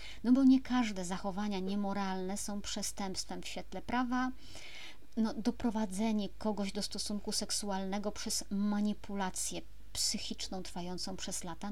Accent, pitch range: native, 180-225 Hz